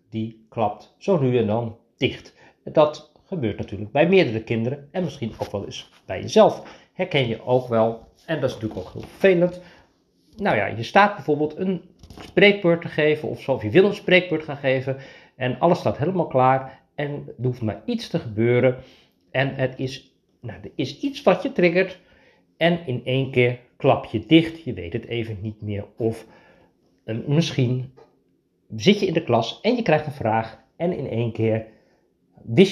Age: 50-69